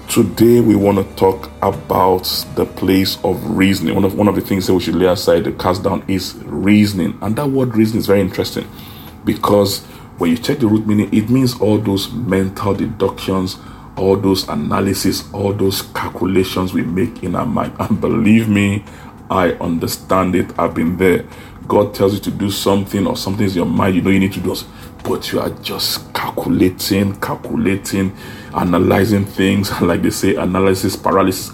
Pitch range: 95-105 Hz